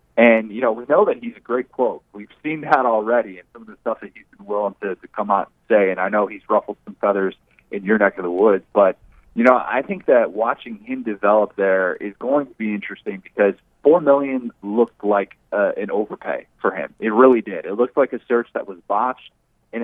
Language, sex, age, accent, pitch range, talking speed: English, male, 30-49, American, 100-120 Hz, 240 wpm